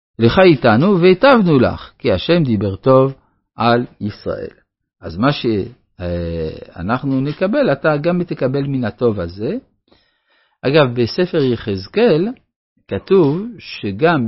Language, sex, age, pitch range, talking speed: Hebrew, male, 50-69, 105-160 Hz, 105 wpm